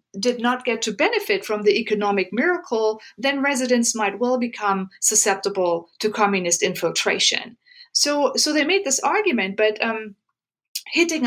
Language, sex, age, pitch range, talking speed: English, female, 50-69, 195-245 Hz, 145 wpm